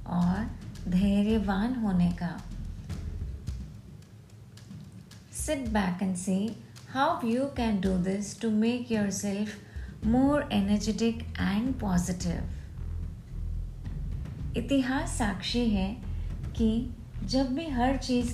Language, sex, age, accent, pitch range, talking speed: Hindi, female, 30-49, native, 180-230 Hz, 40 wpm